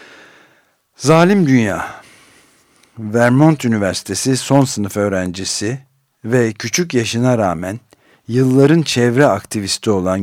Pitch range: 105-130 Hz